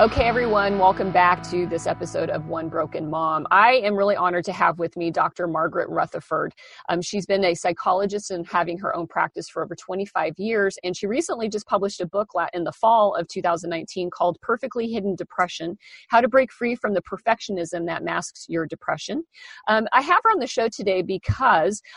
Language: English